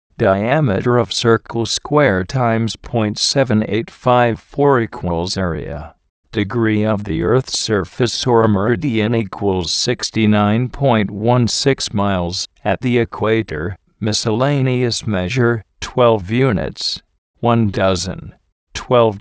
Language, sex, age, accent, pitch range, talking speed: English, male, 50-69, American, 100-120 Hz, 85 wpm